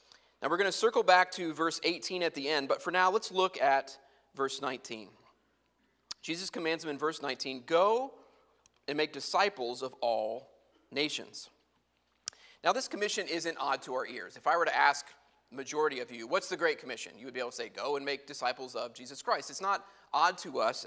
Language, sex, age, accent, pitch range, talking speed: English, male, 30-49, American, 150-215 Hz, 205 wpm